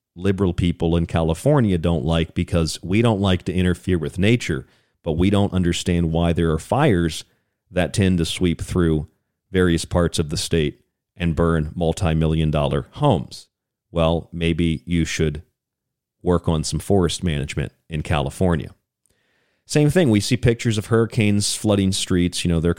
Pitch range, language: 85-100 Hz, English